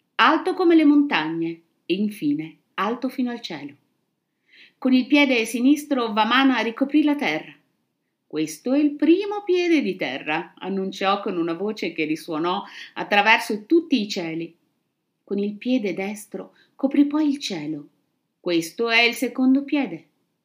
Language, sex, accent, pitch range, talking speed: Italian, female, native, 180-260 Hz, 140 wpm